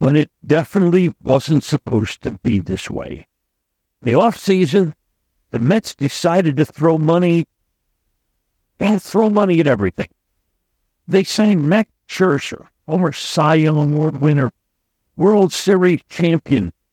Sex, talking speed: male, 130 wpm